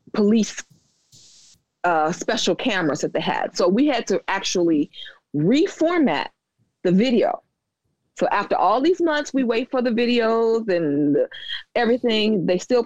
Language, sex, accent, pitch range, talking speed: English, female, American, 155-220 Hz, 135 wpm